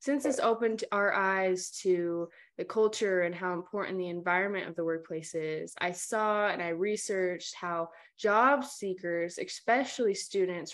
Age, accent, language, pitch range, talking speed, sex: 10-29, American, English, 175-220 Hz, 150 wpm, female